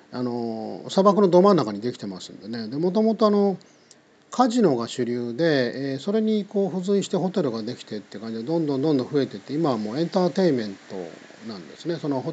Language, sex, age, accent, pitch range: Japanese, male, 40-59, native, 115-185 Hz